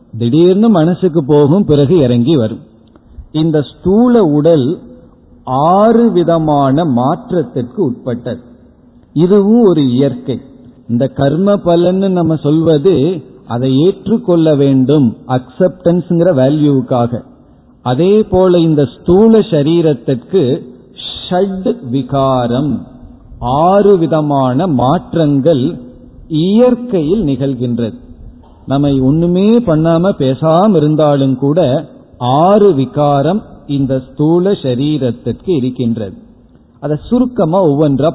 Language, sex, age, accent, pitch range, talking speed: Tamil, male, 50-69, native, 125-175 Hz, 80 wpm